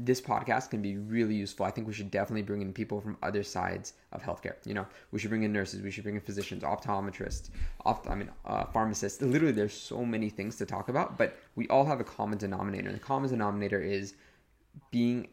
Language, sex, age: English, male, 20-39